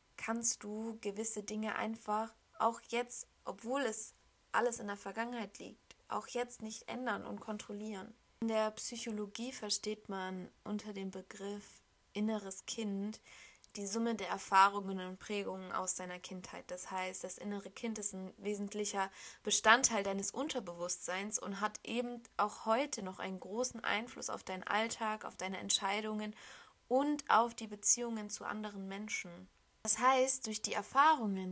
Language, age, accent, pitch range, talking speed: German, 20-39, German, 195-235 Hz, 145 wpm